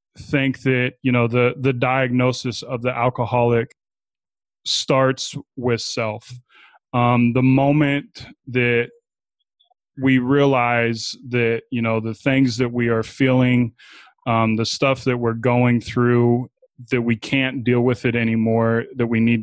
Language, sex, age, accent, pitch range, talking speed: English, male, 20-39, American, 115-130 Hz, 140 wpm